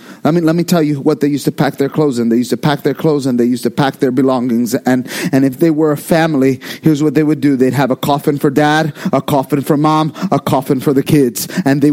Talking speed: 280 wpm